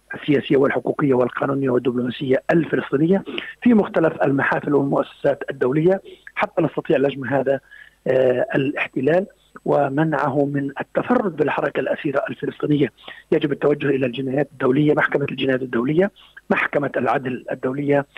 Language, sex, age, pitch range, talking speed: Arabic, male, 50-69, 135-180 Hz, 105 wpm